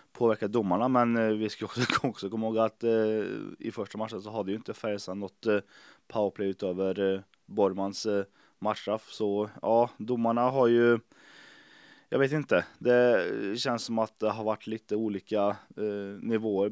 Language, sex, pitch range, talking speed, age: Swedish, male, 100-120 Hz, 170 wpm, 20-39